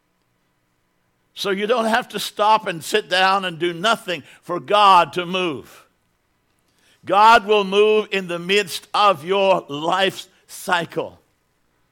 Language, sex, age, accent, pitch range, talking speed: English, male, 60-79, American, 145-200 Hz, 130 wpm